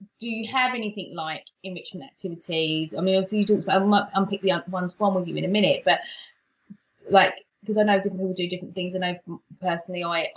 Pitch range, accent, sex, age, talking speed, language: 160-205 Hz, British, female, 20-39, 215 wpm, English